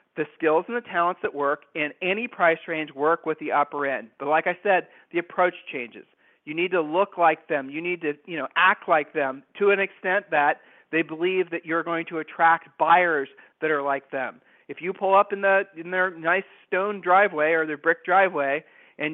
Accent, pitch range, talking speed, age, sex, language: American, 155-185 Hz, 215 wpm, 40-59, male, English